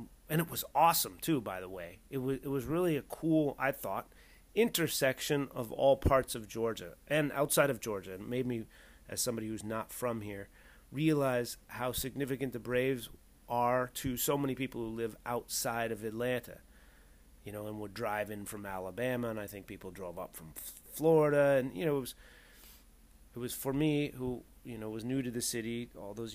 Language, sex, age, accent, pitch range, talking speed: English, male, 30-49, American, 110-145 Hz, 195 wpm